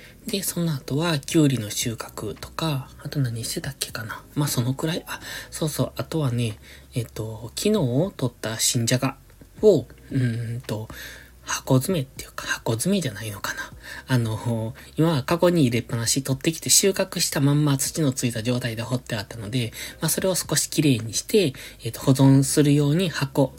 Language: Japanese